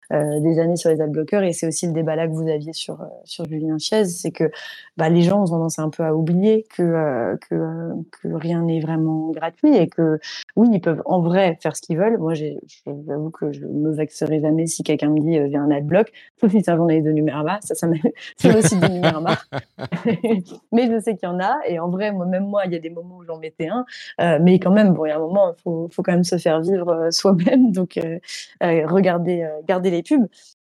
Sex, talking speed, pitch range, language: female, 255 wpm, 160-185 Hz, French